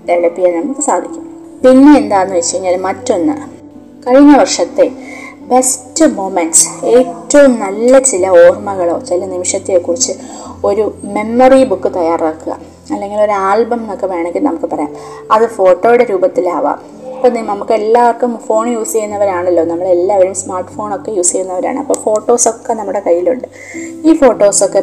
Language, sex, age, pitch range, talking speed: Malayalam, female, 20-39, 180-255 Hz, 125 wpm